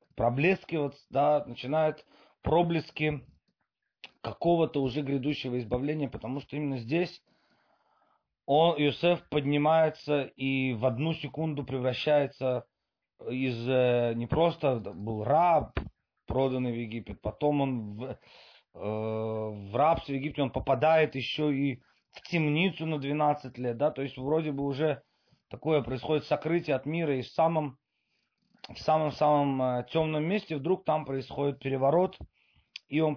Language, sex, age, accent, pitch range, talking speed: Russian, male, 30-49, native, 120-150 Hz, 125 wpm